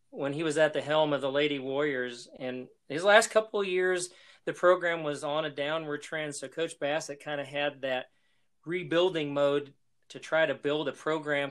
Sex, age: male, 40-59